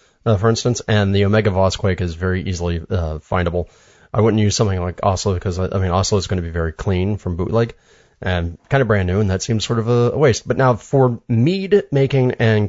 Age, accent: 30-49, American